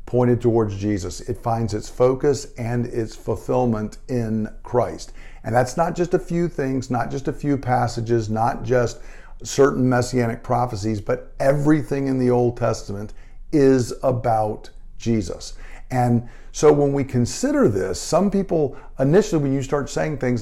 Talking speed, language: 155 wpm, English